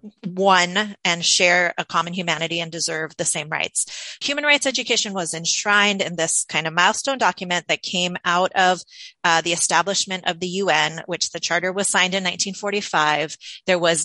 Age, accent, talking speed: 30-49, American, 175 wpm